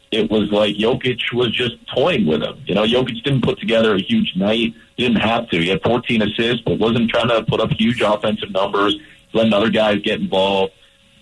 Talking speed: 210 wpm